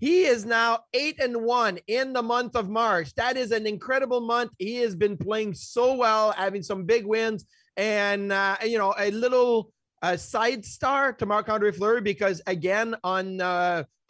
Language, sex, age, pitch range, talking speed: English, male, 30-49, 185-230 Hz, 185 wpm